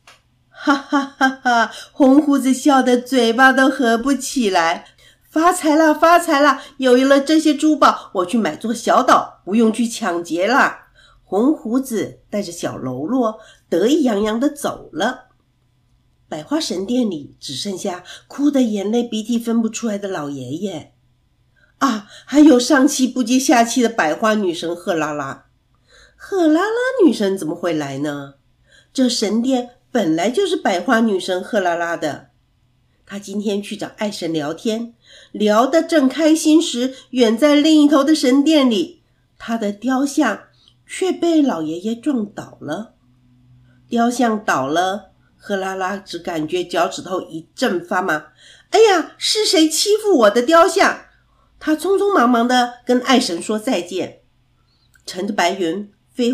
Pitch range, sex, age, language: 185-280 Hz, female, 50-69, Chinese